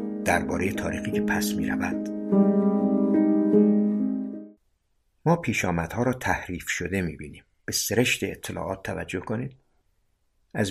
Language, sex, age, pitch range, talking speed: Persian, male, 50-69, 90-115 Hz, 105 wpm